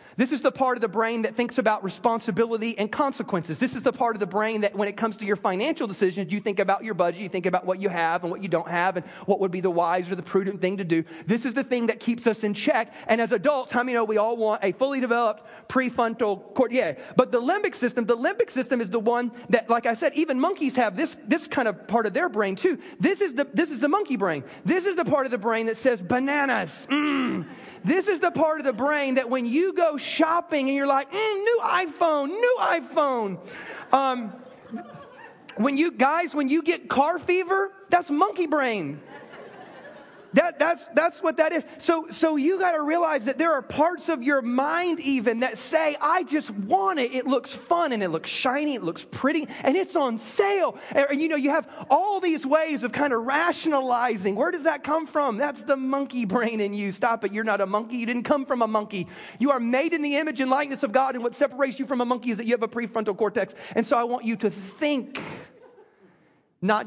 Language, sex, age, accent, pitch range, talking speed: English, male, 30-49, American, 220-300 Hz, 235 wpm